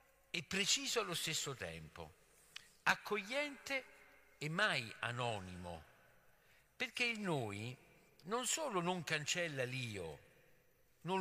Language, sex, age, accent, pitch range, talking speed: Italian, male, 60-79, native, 120-180 Hz, 95 wpm